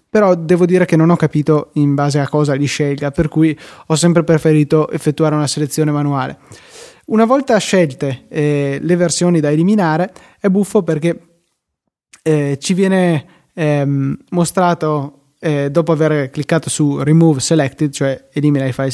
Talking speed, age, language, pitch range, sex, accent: 155 wpm, 20-39, Italian, 150-180 Hz, male, native